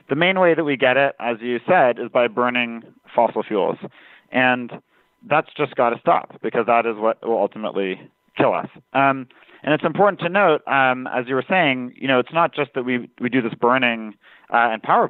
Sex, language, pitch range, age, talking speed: male, English, 115-145 Hz, 40-59, 220 wpm